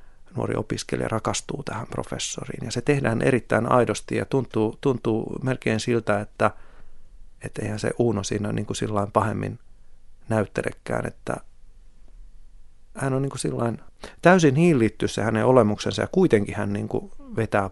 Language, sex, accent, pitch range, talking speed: Finnish, male, native, 105-135 Hz, 135 wpm